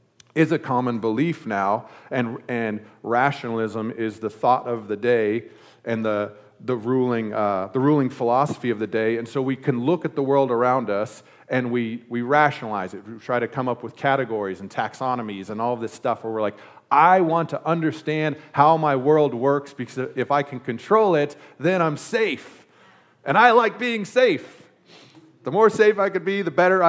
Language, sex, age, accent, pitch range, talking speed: English, male, 40-59, American, 115-150 Hz, 190 wpm